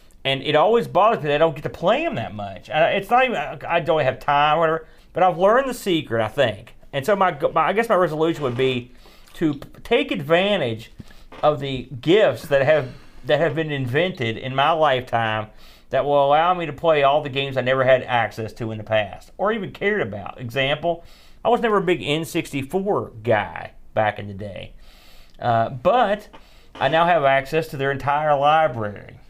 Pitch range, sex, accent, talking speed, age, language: 120-170 Hz, male, American, 200 wpm, 40-59, English